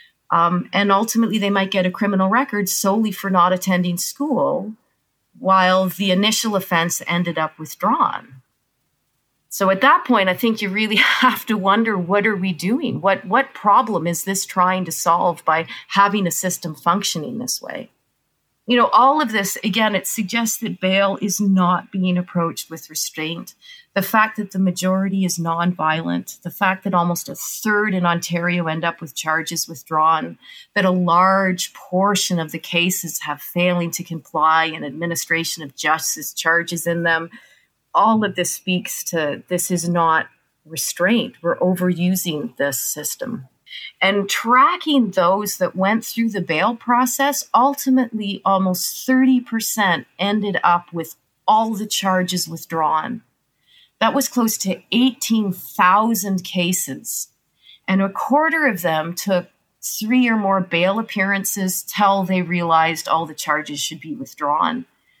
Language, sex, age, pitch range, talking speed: English, female, 30-49, 170-215 Hz, 150 wpm